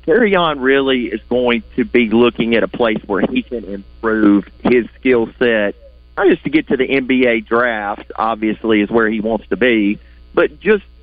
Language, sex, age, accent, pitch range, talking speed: English, male, 40-59, American, 110-140 Hz, 190 wpm